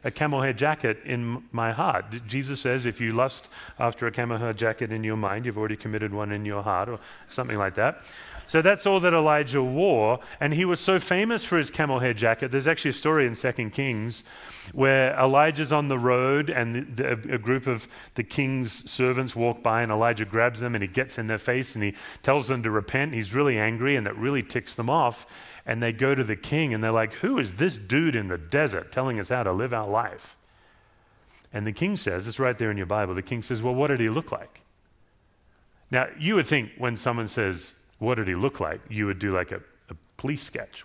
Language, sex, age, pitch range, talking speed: English, male, 30-49, 110-140 Hz, 230 wpm